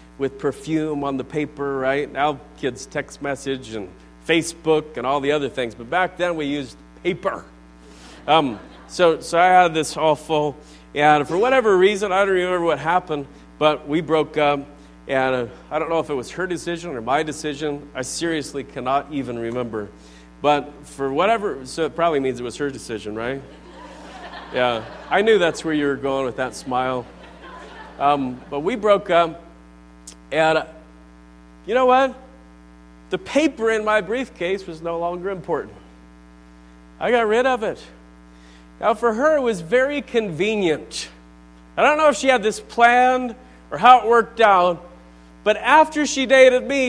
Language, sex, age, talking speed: English, male, 40-59, 170 wpm